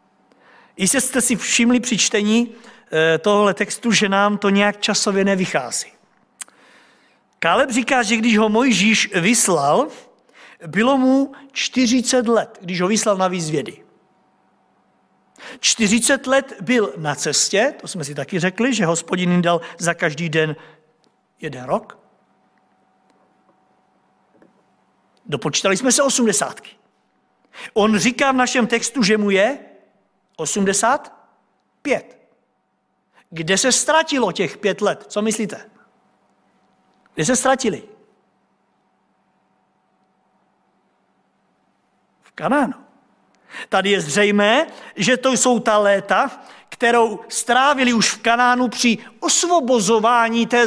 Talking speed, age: 105 wpm, 50-69